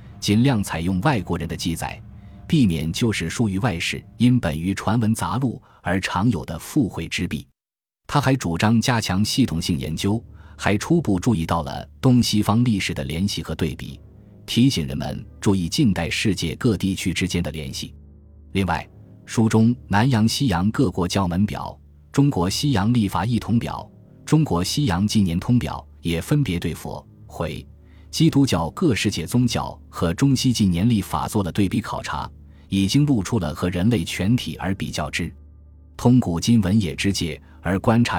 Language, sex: Chinese, male